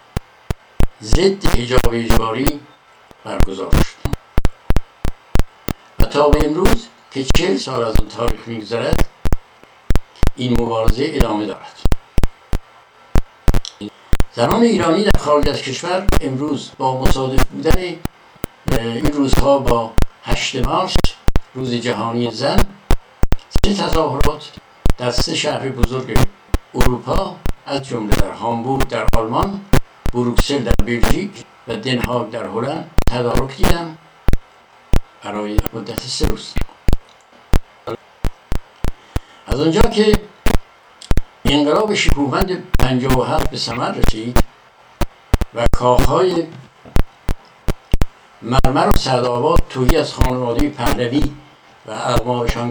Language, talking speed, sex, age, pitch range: Persian, 100 wpm, male, 60-79, 115-145 Hz